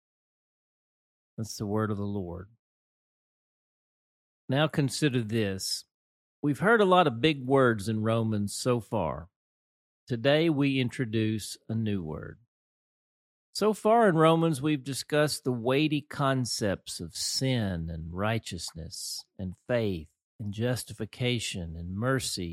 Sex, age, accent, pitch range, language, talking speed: male, 50-69, American, 100-140 Hz, English, 120 wpm